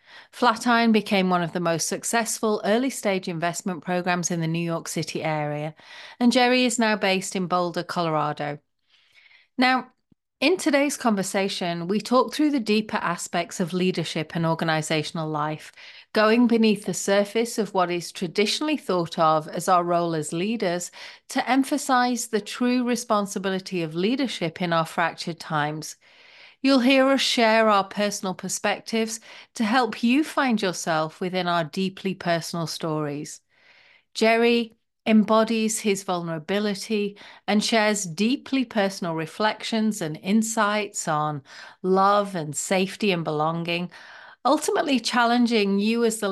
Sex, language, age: female, English, 30-49